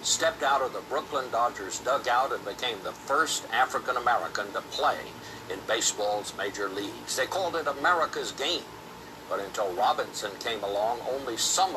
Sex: male